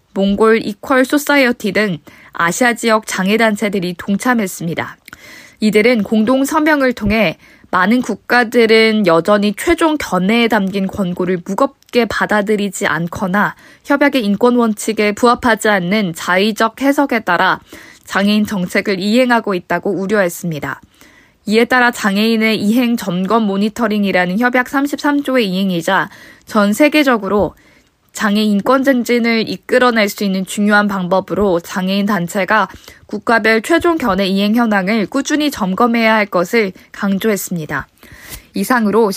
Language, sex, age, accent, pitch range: Korean, female, 20-39, native, 190-240 Hz